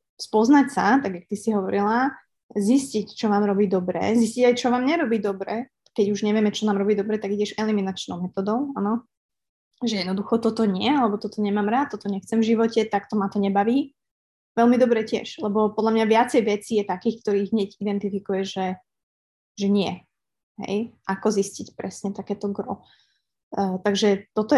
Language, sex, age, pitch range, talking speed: Slovak, female, 20-39, 200-230 Hz, 175 wpm